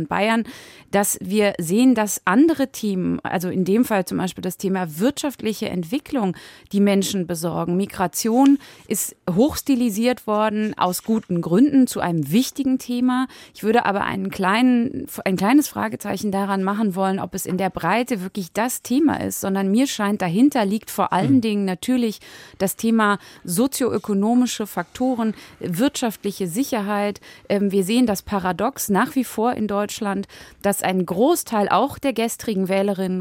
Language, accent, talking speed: German, German, 150 wpm